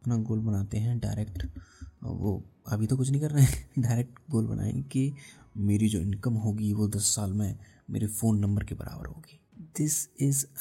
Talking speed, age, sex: 185 wpm, 30-49, male